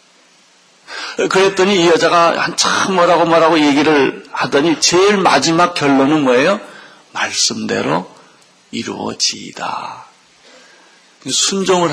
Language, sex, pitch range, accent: Korean, male, 135-190 Hz, native